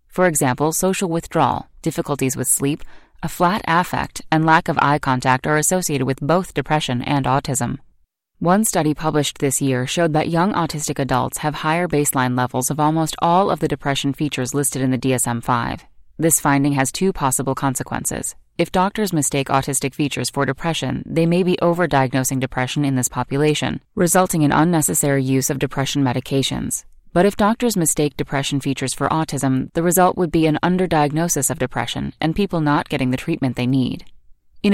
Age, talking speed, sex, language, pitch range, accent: 30-49, 175 wpm, female, English, 135-165 Hz, American